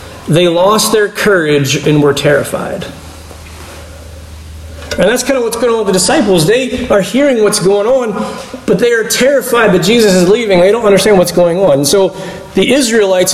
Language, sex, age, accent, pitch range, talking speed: English, male, 40-59, American, 145-210 Hz, 180 wpm